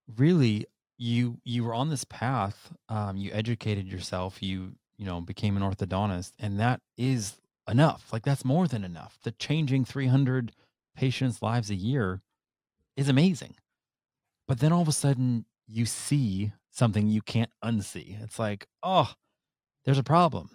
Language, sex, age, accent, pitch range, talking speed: English, male, 30-49, American, 105-140 Hz, 155 wpm